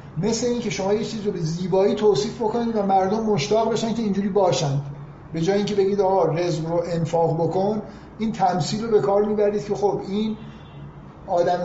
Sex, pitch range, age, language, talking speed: male, 155-195 Hz, 50-69, Persian, 175 wpm